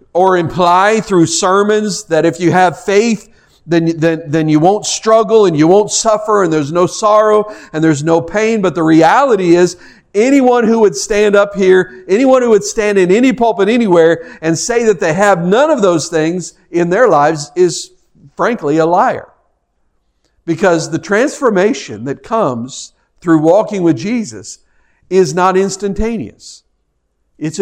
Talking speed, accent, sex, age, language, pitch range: 160 wpm, American, male, 50-69, English, 155-205 Hz